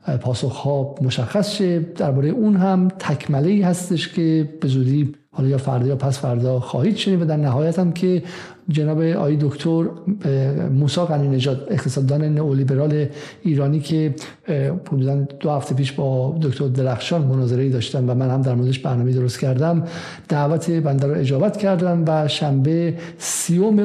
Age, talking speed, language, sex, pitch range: 50-69, 140 wpm, Persian, male, 140-165 Hz